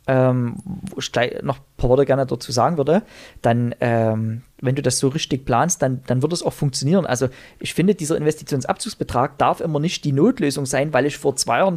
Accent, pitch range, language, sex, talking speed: German, 125-170 Hz, German, male, 210 wpm